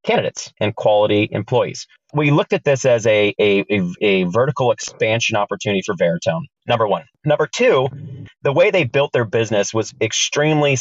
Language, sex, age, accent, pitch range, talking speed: English, male, 30-49, American, 100-135 Hz, 165 wpm